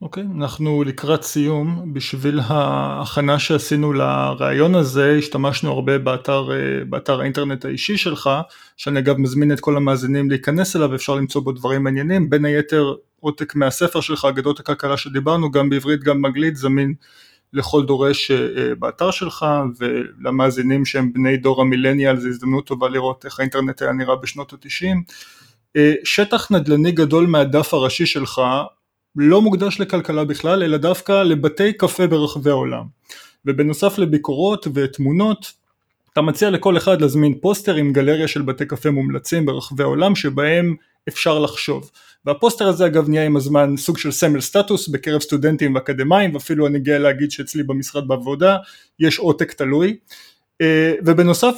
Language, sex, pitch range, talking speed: Hebrew, male, 140-170 Hz, 140 wpm